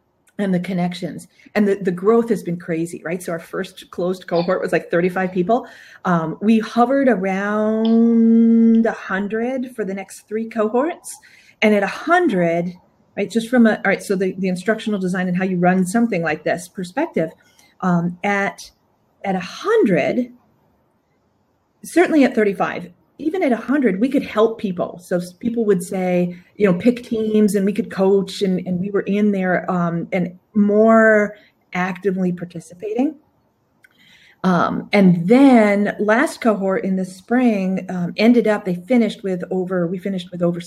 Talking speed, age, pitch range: 165 wpm, 40-59, 180-230 Hz